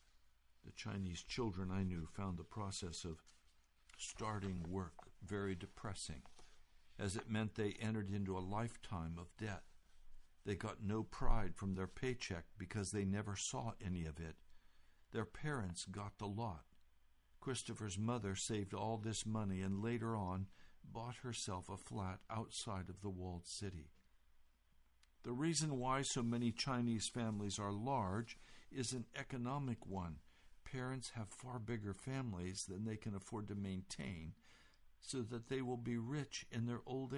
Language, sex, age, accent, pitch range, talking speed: English, male, 60-79, American, 85-110 Hz, 150 wpm